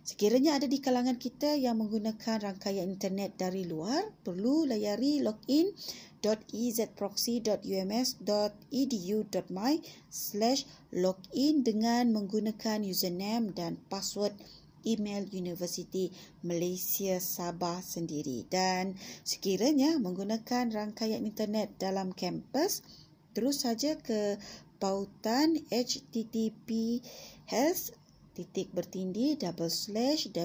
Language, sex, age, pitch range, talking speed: Malay, female, 20-39, 190-250 Hz, 75 wpm